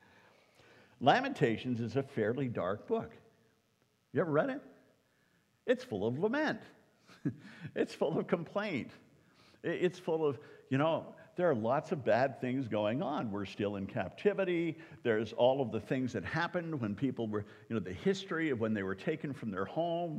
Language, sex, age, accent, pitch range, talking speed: English, male, 50-69, American, 105-150 Hz, 170 wpm